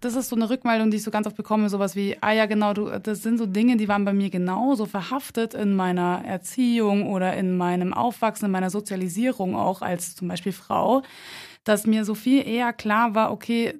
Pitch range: 195-230 Hz